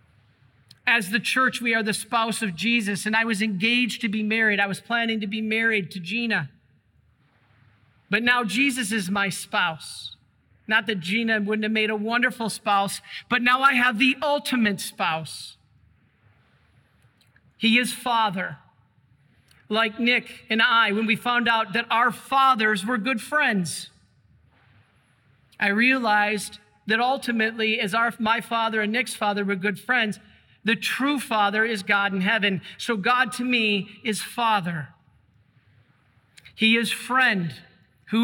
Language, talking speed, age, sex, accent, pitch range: English, 145 wpm, 50-69, male, American, 165-230 Hz